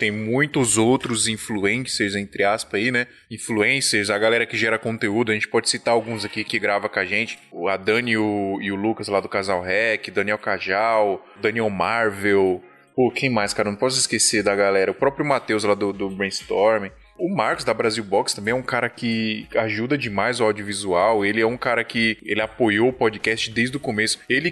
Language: Portuguese